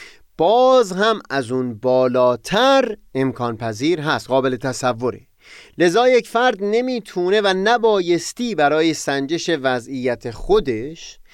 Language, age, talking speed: Persian, 30-49, 105 wpm